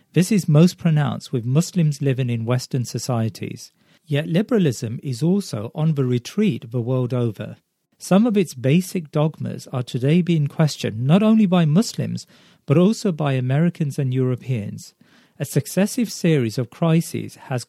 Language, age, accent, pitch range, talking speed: English, 40-59, British, 130-170 Hz, 155 wpm